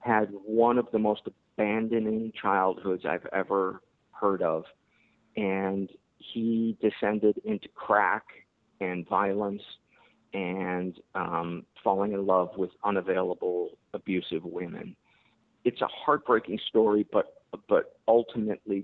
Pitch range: 95-110 Hz